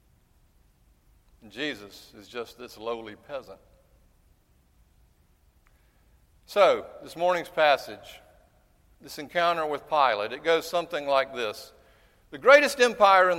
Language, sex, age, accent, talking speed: English, male, 50-69, American, 105 wpm